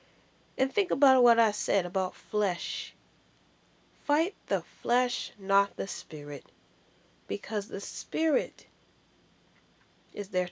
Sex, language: female, English